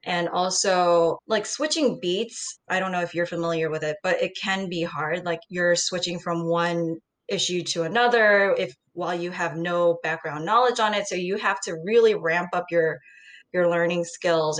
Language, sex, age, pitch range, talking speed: English, female, 10-29, 160-190 Hz, 190 wpm